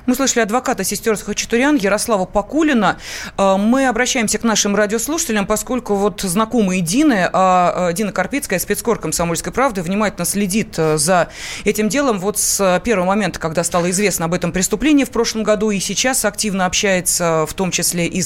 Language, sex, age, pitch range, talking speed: Russian, female, 20-39, 180-230 Hz, 155 wpm